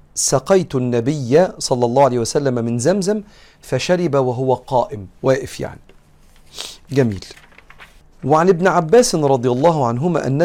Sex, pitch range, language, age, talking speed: male, 120-170 Hz, Arabic, 40-59, 120 wpm